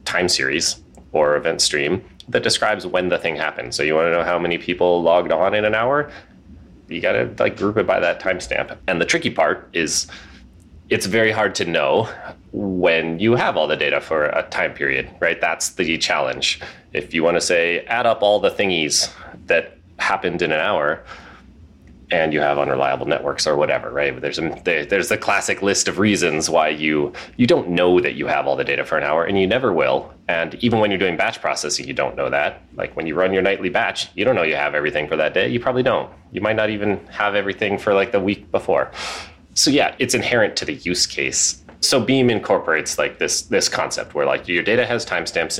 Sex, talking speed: male, 220 wpm